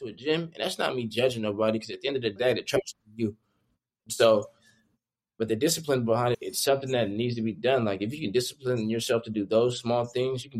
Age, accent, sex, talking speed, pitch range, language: 20-39, American, male, 255 wpm, 115-130 Hz, English